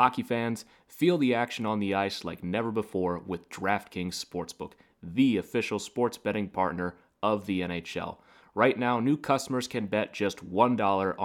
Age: 30-49